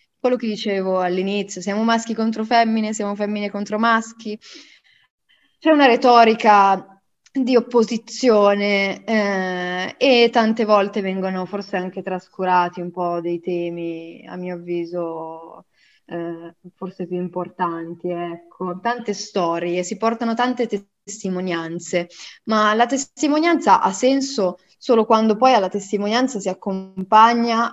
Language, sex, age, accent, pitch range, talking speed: Italian, female, 20-39, native, 185-220 Hz, 120 wpm